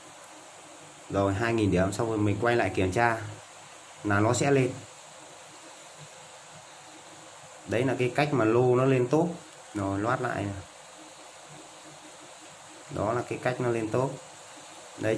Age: 20-39